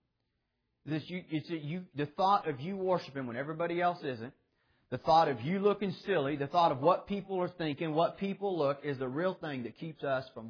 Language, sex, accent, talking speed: English, male, American, 190 wpm